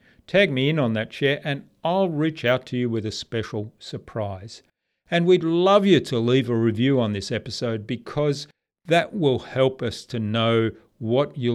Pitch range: 110-150 Hz